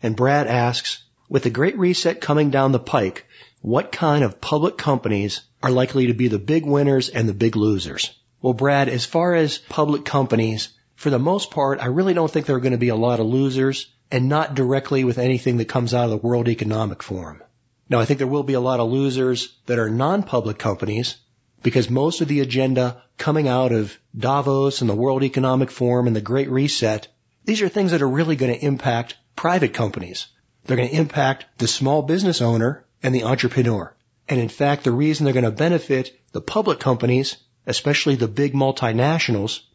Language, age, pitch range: English, 40-59, 120-140 Hz